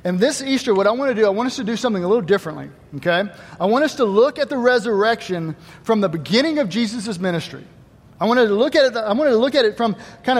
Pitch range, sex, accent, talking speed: 165-240 Hz, male, American, 235 wpm